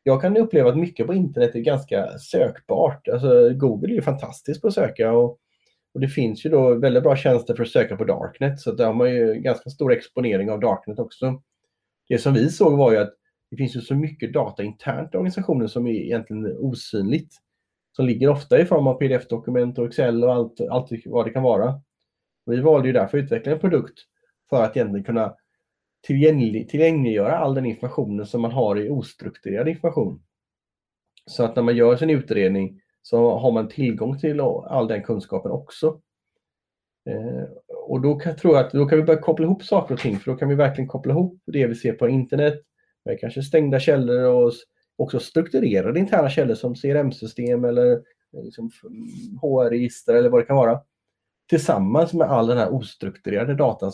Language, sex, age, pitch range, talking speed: Swedish, male, 30-49, 120-155 Hz, 190 wpm